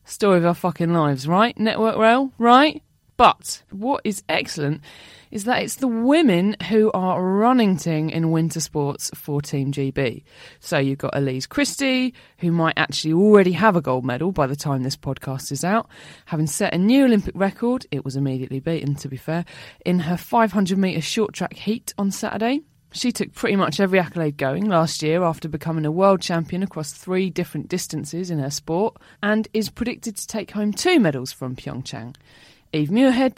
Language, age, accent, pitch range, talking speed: English, 20-39, British, 150-210 Hz, 185 wpm